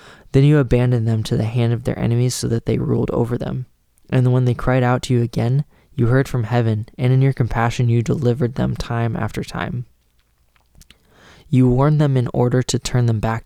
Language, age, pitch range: English, 20-39, 115-130 Hz